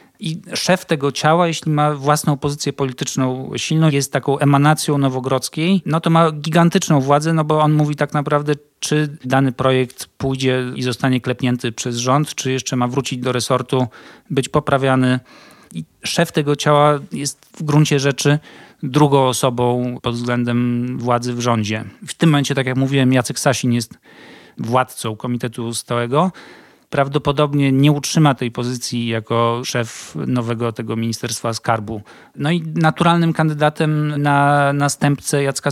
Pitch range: 125-150 Hz